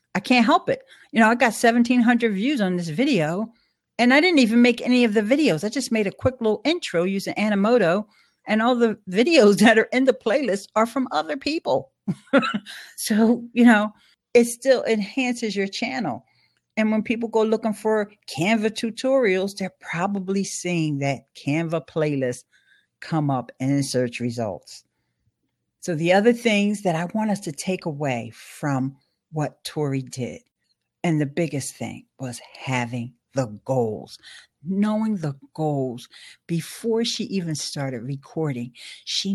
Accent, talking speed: American, 155 wpm